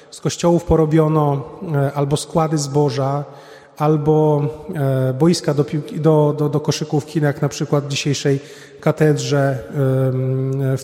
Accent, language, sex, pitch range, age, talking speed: native, Polish, male, 140-160 Hz, 30-49, 110 wpm